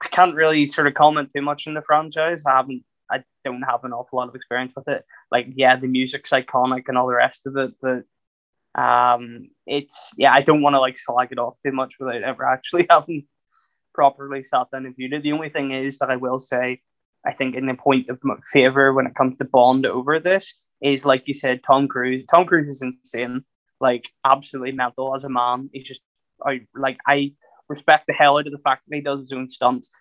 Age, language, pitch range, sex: 10-29, English, 125-140 Hz, male